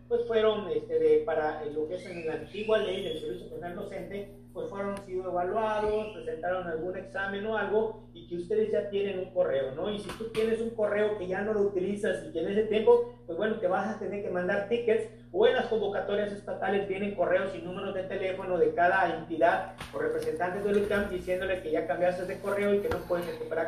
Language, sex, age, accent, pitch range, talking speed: Spanish, male, 40-59, Mexican, 185-240 Hz, 220 wpm